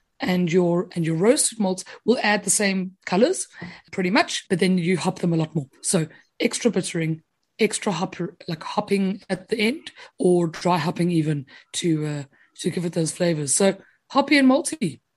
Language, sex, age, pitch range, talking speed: English, female, 30-49, 175-225 Hz, 180 wpm